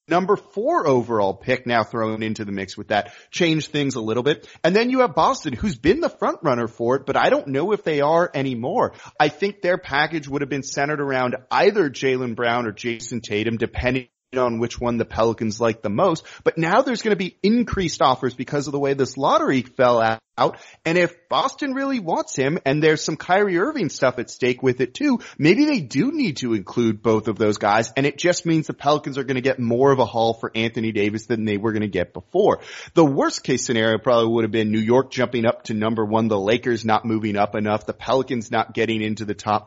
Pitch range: 115-155 Hz